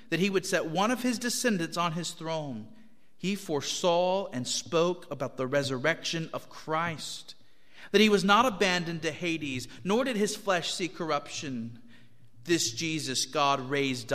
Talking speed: 155 wpm